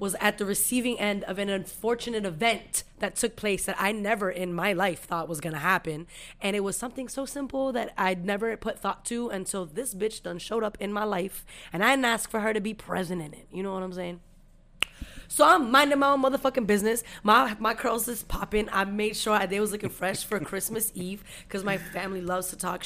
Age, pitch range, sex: 20-39, 175-220 Hz, female